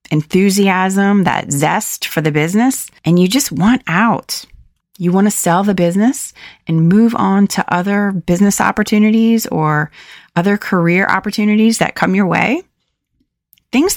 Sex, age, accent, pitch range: female, 30-49, American, 170-220 Hz